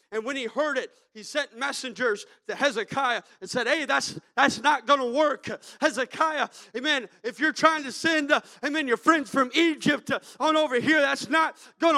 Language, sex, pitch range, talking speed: English, male, 260-320 Hz, 185 wpm